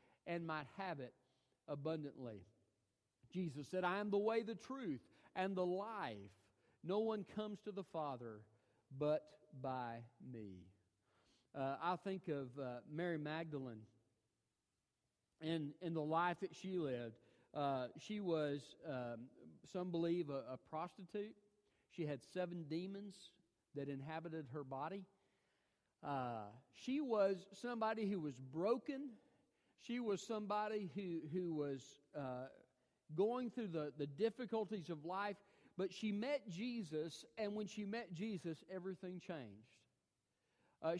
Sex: male